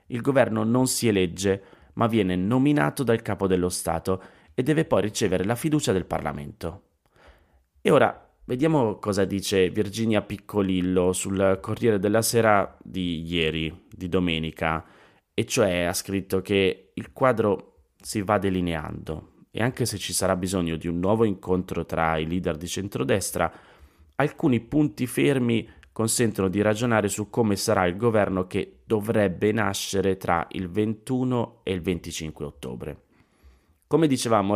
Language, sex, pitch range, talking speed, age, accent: Italian, male, 85-110 Hz, 145 wpm, 30-49, native